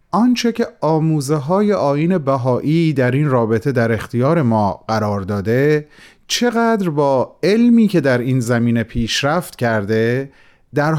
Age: 30-49